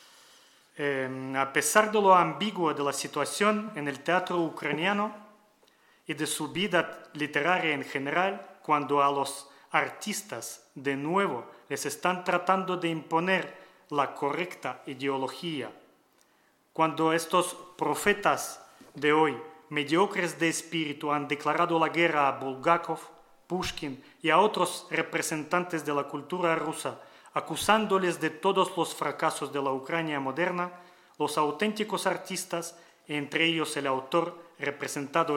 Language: Spanish